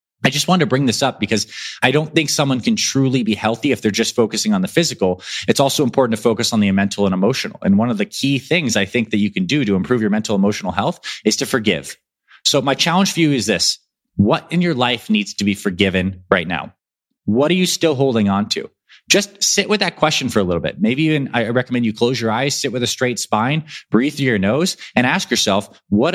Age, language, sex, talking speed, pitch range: 20-39, English, male, 250 wpm, 105-150 Hz